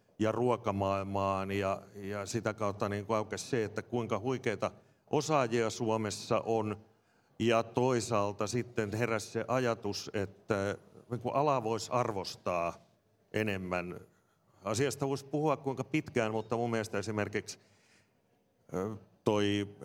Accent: native